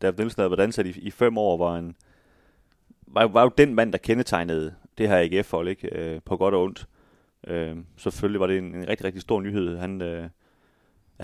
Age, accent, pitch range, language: 30-49, native, 85-110 Hz, Danish